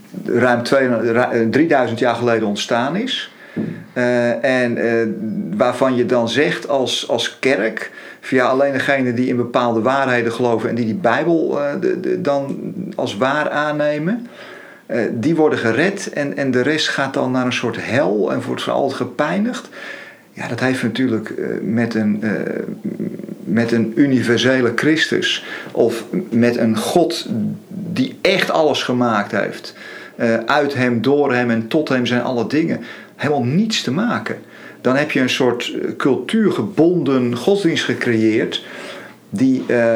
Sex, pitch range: male, 115-150 Hz